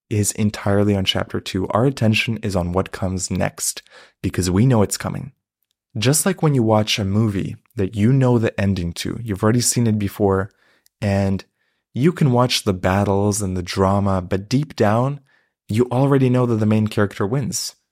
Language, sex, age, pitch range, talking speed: English, male, 20-39, 100-125 Hz, 185 wpm